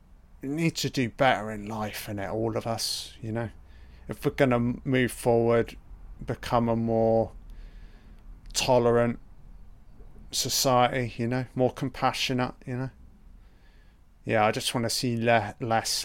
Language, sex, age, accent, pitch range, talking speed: English, male, 30-49, British, 105-125 Hz, 130 wpm